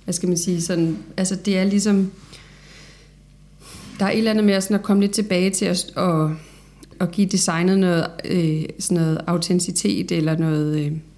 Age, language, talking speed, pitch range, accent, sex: 30-49, Danish, 175 wpm, 170-190 Hz, native, female